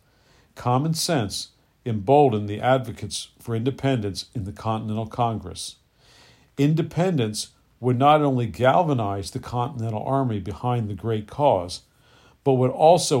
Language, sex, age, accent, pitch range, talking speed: English, male, 50-69, American, 105-130 Hz, 120 wpm